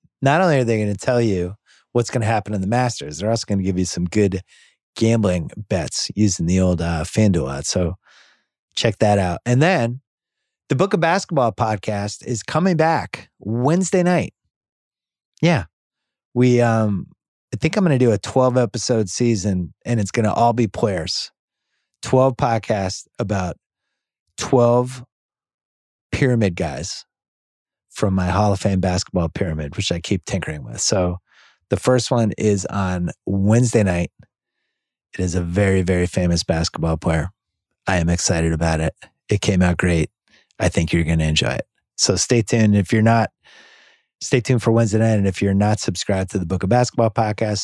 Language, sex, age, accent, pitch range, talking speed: English, male, 30-49, American, 90-120 Hz, 175 wpm